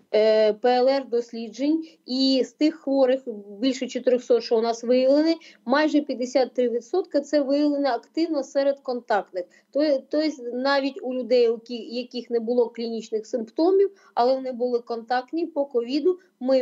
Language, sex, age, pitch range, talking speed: Ukrainian, female, 20-39, 240-285 Hz, 125 wpm